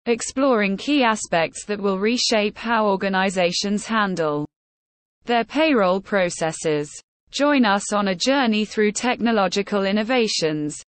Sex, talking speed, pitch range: female, 110 wpm, 180-250 Hz